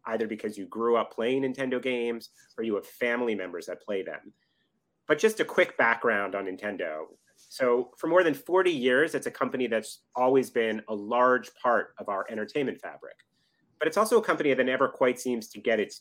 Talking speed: 200 wpm